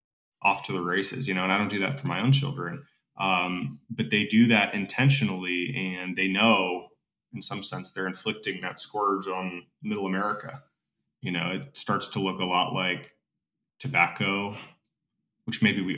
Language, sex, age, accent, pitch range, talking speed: English, male, 20-39, American, 95-115 Hz, 175 wpm